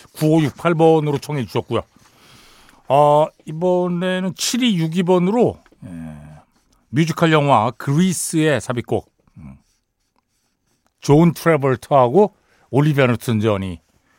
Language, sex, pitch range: Korean, male, 120-185 Hz